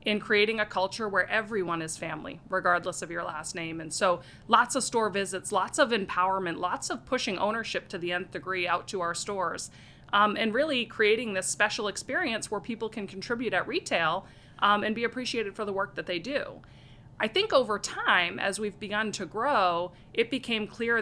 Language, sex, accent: English, female, American